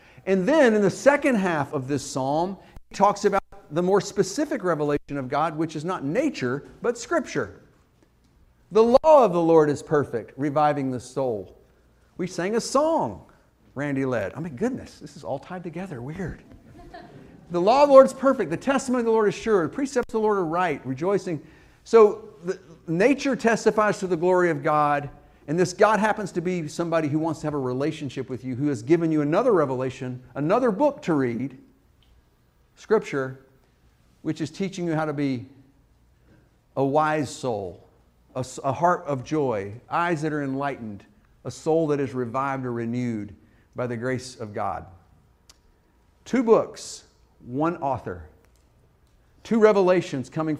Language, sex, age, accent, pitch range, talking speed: English, male, 50-69, American, 135-195 Hz, 170 wpm